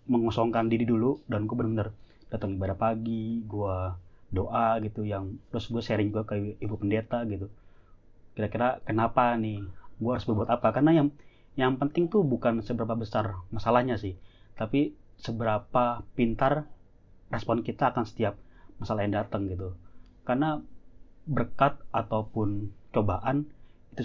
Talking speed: 135 wpm